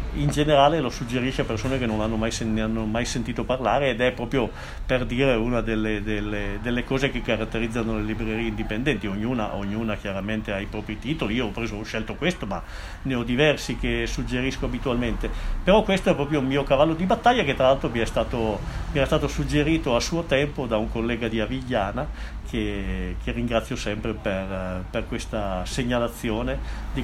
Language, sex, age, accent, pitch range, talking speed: Italian, male, 50-69, native, 110-130 Hz, 185 wpm